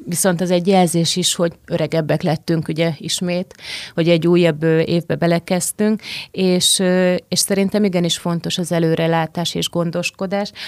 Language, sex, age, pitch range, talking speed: Hungarian, female, 30-49, 160-185 Hz, 140 wpm